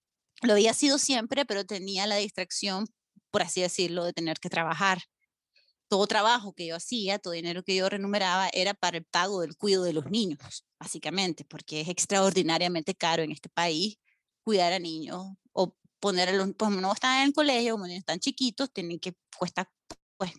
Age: 30-49